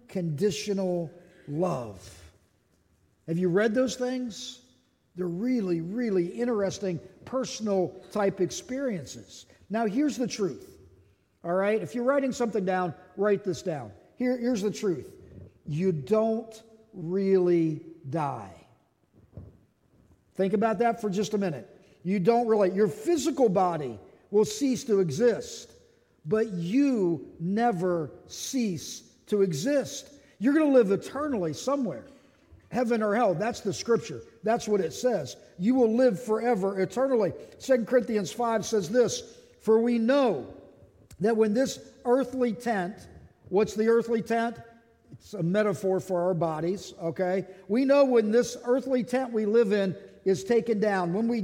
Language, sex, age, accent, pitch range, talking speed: English, male, 50-69, American, 180-240 Hz, 140 wpm